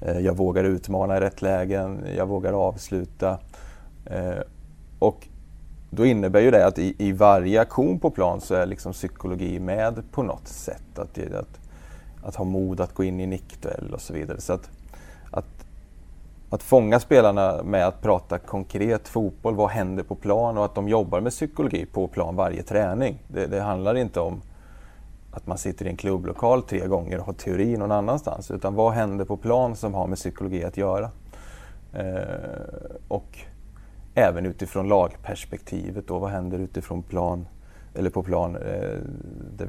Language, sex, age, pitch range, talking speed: English, male, 30-49, 90-100 Hz, 155 wpm